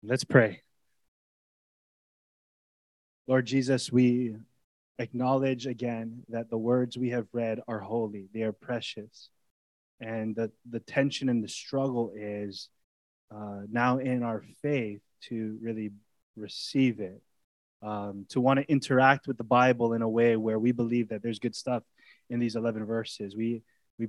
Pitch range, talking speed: 110-130 Hz, 145 wpm